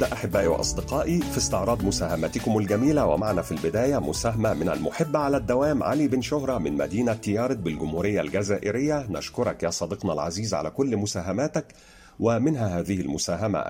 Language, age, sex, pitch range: Arabic, 50-69, male, 95-130 Hz